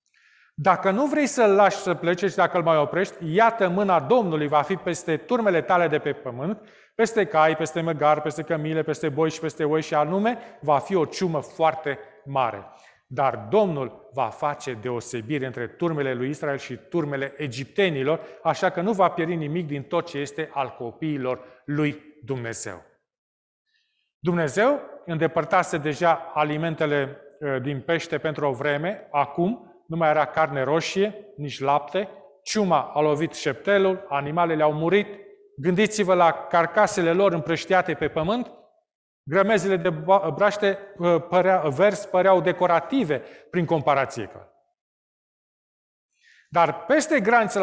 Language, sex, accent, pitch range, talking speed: Romanian, male, native, 150-200 Hz, 135 wpm